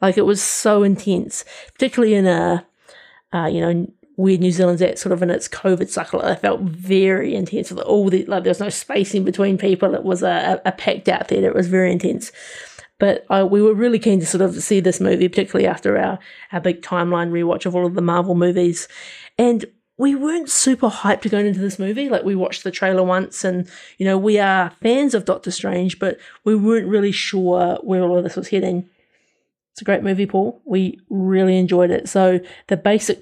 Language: English